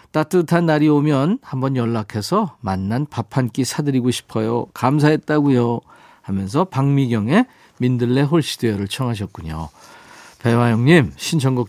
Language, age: Korean, 40-59